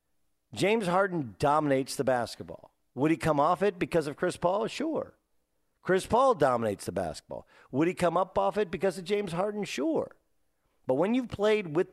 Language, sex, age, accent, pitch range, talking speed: English, male, 50-69, American, 110-180 Hz, 180 wpm